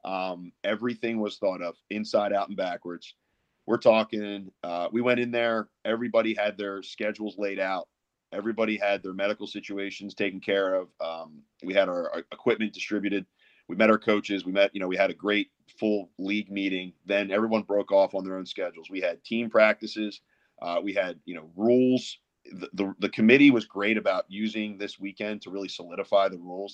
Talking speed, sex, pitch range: 190 wpm, male, 95-110 Hz